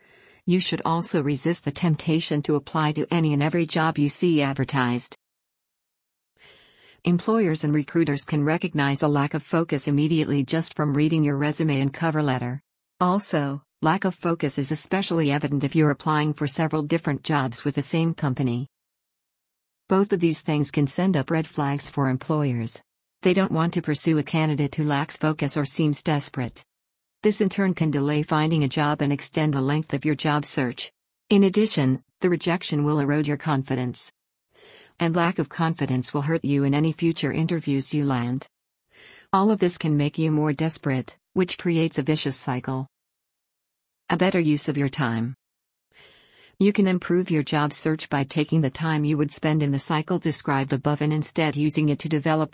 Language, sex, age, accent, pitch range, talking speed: English, female, 50-69, American, 140-165 Hz, 180 wpm